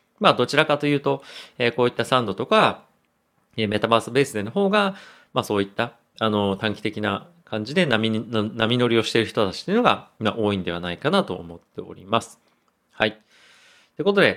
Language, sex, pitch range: Japanese, male, 95-120 Hz